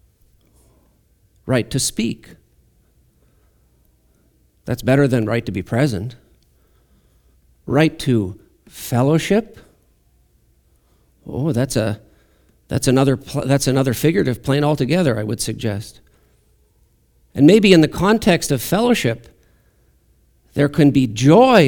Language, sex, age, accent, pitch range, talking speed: English, male, 50-69, American, 105-155 Hz, 100 wpm